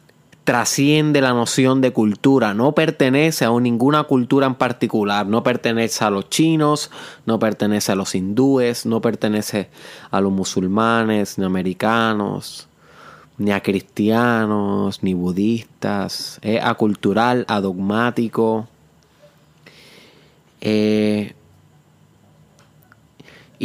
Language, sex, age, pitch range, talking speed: Spanish, male, 20-39, 115-145 Hz, 100 wpm